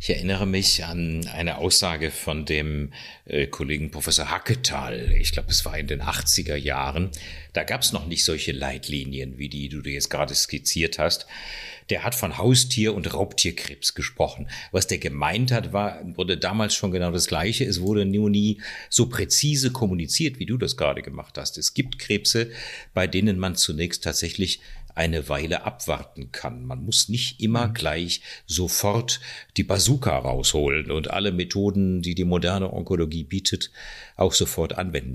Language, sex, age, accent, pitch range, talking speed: German, male, 50-69, German, 75-105 Hz, 165 wpm